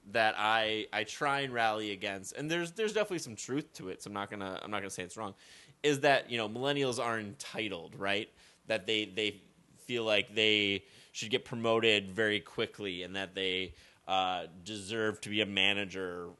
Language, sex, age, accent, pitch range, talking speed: English, male, 20-39, American, 100-120 Hz, 210 wpm